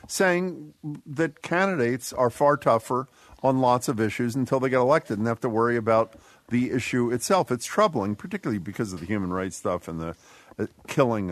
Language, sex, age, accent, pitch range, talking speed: English, male, 50-69, American, 105-145 Hz, 180 wpm